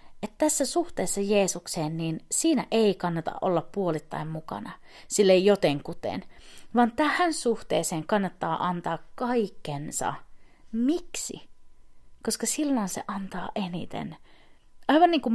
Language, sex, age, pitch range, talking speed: Finnish, female, 30-49, 170-260 Hz, 115 wpm